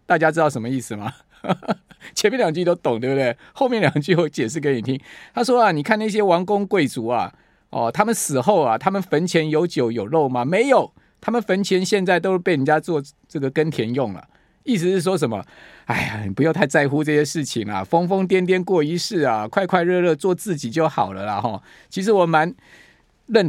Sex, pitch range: male, 150-205 Hz